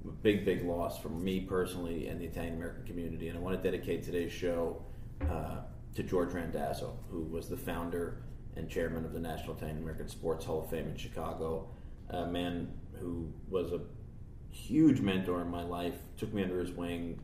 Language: English